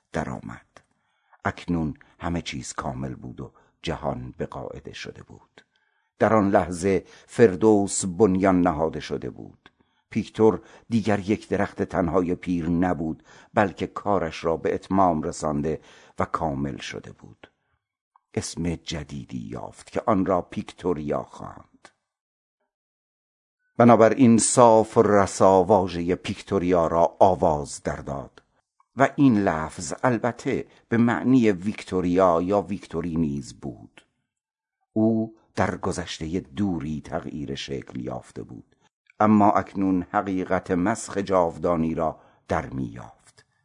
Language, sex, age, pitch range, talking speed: Persian, male, 60-79, 80-105 Hz, 110 wpm